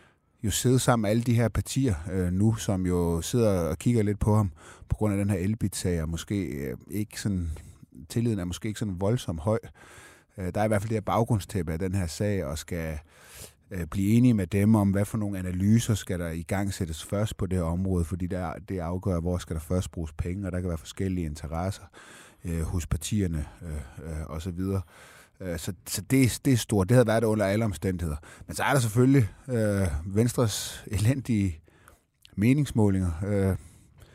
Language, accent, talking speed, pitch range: Danish, native, 200 wpm, 85-105 Hz